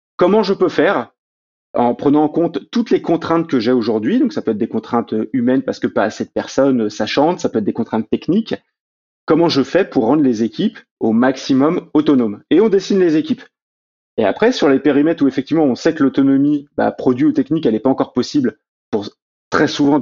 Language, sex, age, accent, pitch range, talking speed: French, male, 30-49, French, 120-165 Hz, 220 wpm